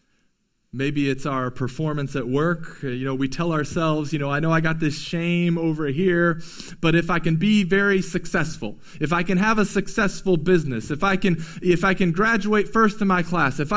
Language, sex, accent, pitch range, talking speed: English, male, American, 165-230 Hz, 205 wpm